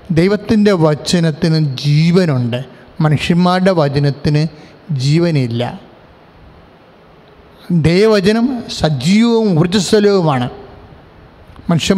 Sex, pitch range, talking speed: male, 150-195 Hz, 100 wpm